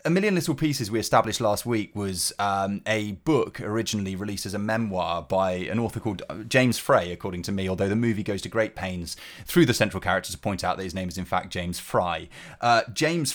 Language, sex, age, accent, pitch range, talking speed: English, male, 30-49, British, 95-115 Hz, 225 wpm